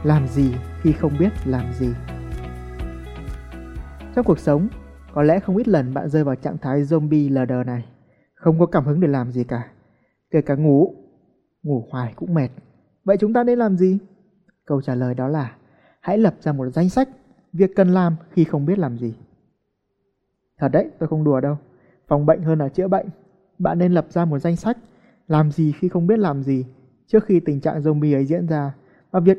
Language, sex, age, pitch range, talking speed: Vietnamese, male, 20-39, 130-180 Hz, 205 wpm